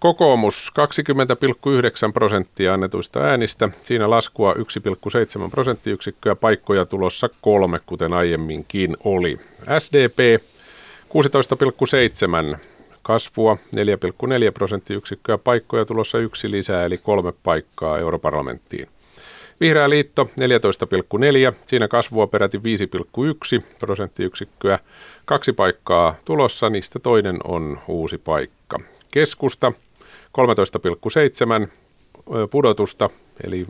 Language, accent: Finnish, native